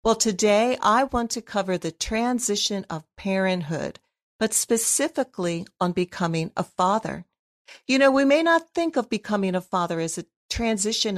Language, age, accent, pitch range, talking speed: English, 50-69, American, 180-230 Hz, 155 wpm